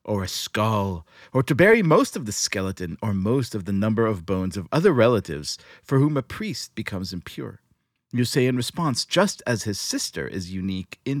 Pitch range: 95-120 Hz